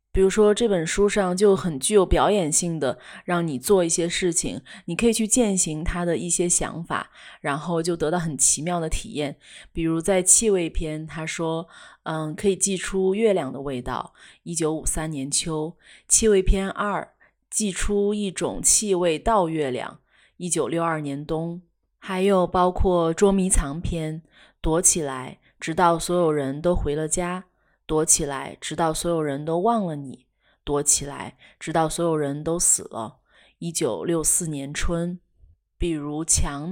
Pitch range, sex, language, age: 155-190 Hz, female, Chinese, 20-39